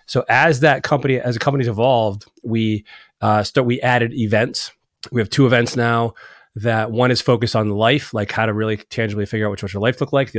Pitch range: 110-130 Hz